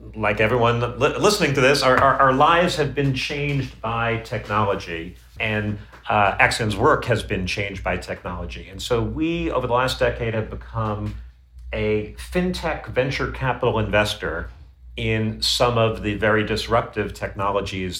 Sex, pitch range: male, 100-130 Hz